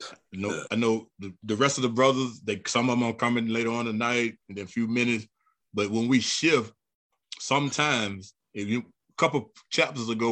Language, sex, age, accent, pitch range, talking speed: English, male, 20-39, American, 110-130 Hz, 215 wpm